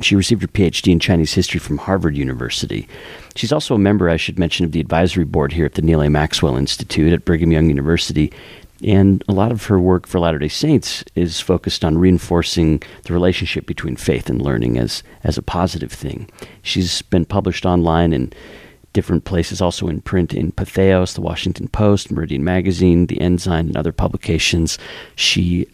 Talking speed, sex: 185 wpm, male